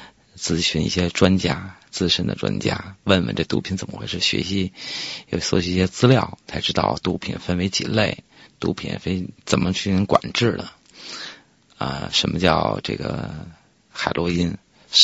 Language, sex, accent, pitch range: Chinese, male, native, 90-105 Hz